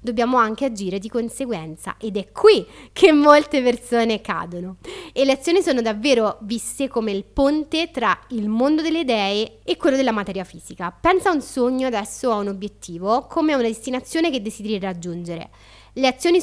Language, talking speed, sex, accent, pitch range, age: Italian, 175 wpm, female, native, 205-275 Hz, 30-49